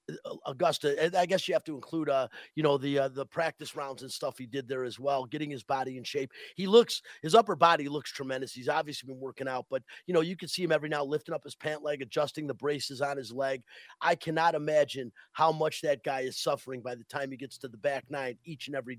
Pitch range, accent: 135-165 Hz, American